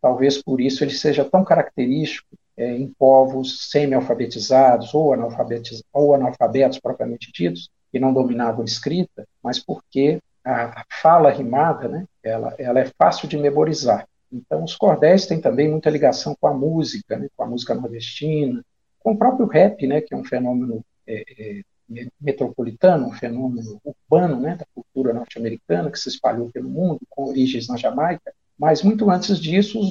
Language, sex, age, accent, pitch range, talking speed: Portuguese, male, 50-69, Brazilian, 125-160 Hz, 165 wpm